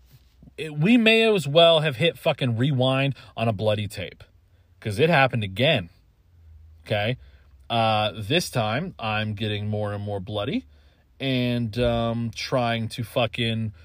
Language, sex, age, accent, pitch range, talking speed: English, male, 30-49, American, 100-140 Hz, 140 wpm